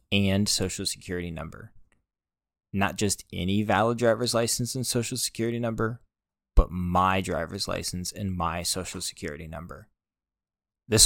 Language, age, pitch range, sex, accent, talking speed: English, 20-39, 85-105 Hz, male, American, 130 wpm